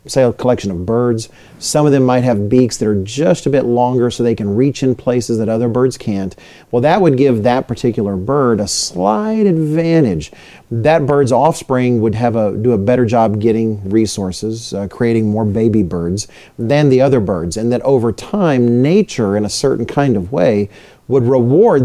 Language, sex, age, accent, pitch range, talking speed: English, male, 40-59, American, 110-140 Hz, 195 wpm